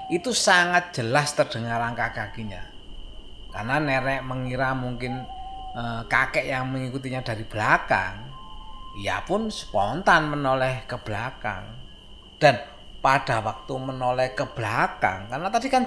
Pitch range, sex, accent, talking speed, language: 115-145 Hz, male, native, 115 wpm, Indonesian